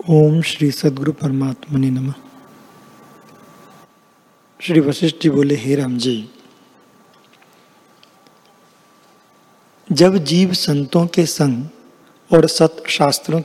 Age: 50-69